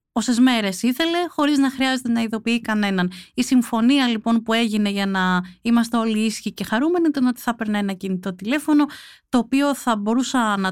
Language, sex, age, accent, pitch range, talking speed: Greek, female, 20-39, native, 210-260 Hz, 185 wpm